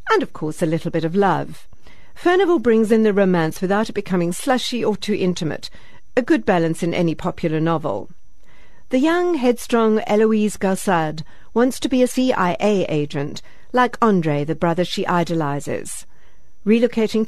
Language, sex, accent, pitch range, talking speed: English, female, British, 170-235 Hz, 155 wpm